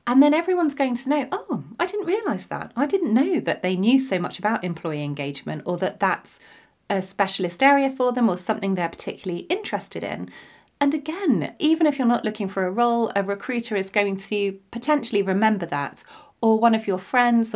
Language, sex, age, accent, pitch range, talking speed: English, female, 30-49, British, 175-240 Hz, 200 wpm